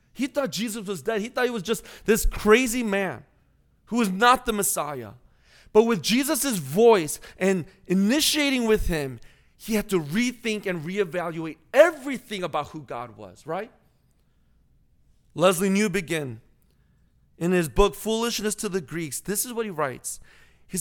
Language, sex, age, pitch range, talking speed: English, male, 30-49, 145-225 Hz, 155 wpm